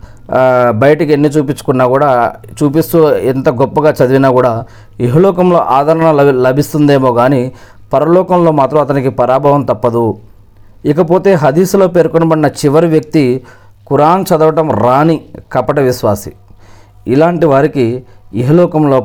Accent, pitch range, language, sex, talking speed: native, 110-140 Hz, Telugu, male, 100 wpm